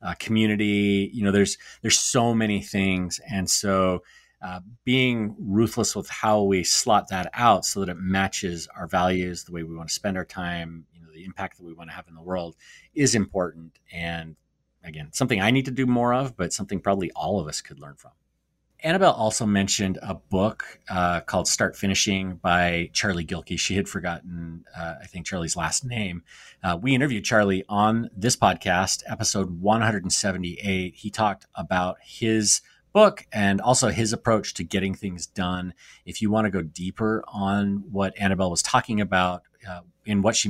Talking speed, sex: 185 wpm, male